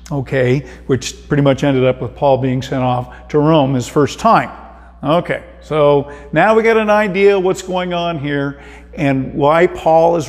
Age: 50-69